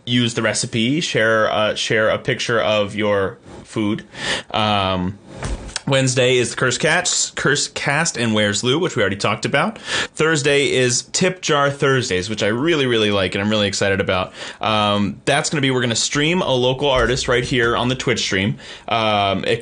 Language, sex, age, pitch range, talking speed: English, male, 30-49, 105-130 Hz, 190 wpm